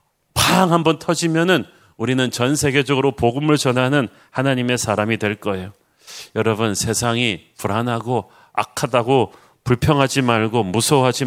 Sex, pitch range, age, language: male, 115-140 Hz, 40-59, Korean